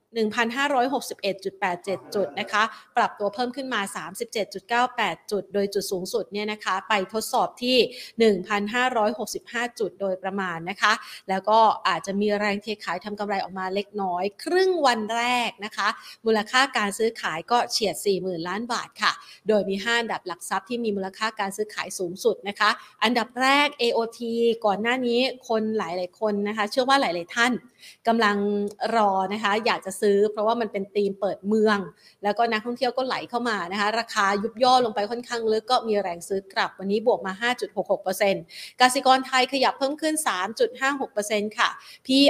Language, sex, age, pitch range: Thai, female, 30-49, 200-250 Hz